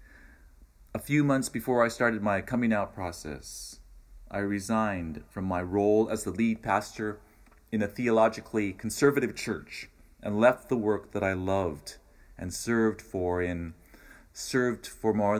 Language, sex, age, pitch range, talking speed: English, male, 40-59, 85-115 Hz, 150 wpm